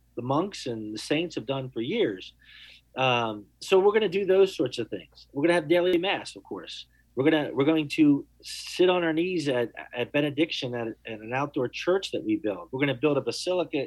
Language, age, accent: English, 40-59, American